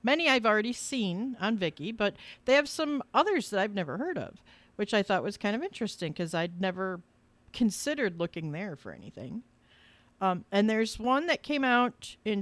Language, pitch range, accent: English, 170-230 Hz, American